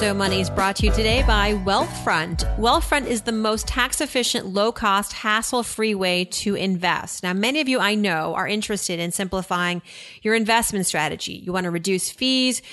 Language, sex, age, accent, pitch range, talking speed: English, female, 30-49, American, 195-240 Hz, 170 wpm